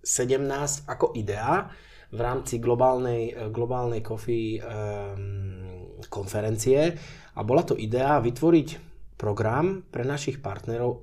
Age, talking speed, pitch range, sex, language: 20-39, 90 wpm, 105-130 Hz, male, Czech